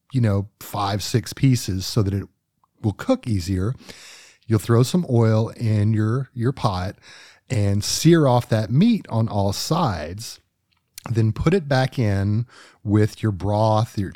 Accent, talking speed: American, 155 wpm